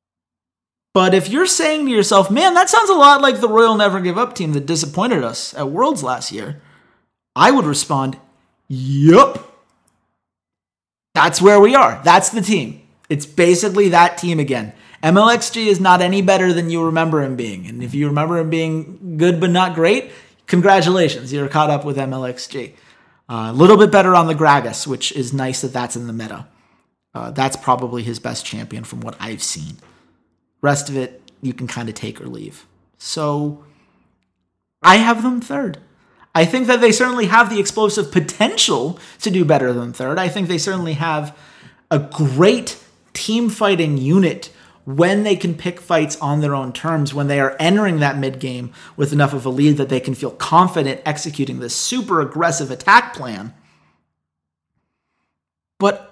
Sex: male